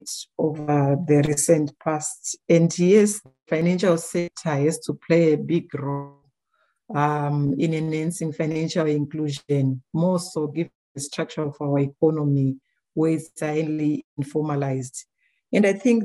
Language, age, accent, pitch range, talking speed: English, 60-79, Nigerian, 145-175 Hz, 125 wpm